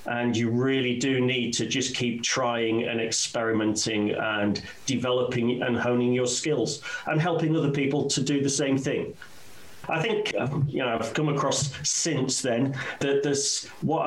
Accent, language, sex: British, English, male